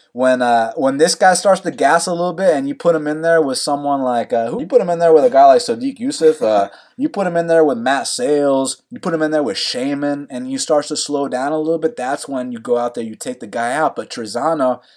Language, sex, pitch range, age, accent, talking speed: English, male, 135-210 Hz, 20-39, American, 285 wpm